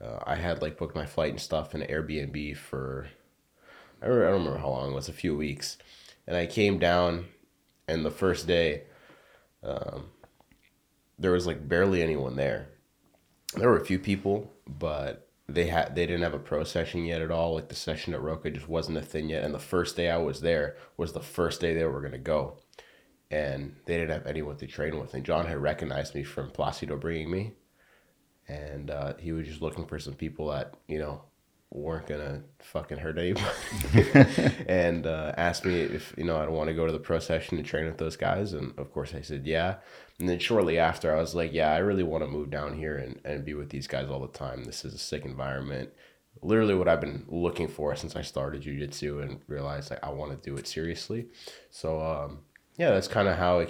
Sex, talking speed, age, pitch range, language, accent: male, 220 wpm, 20-39, 75-85 Hz, English, American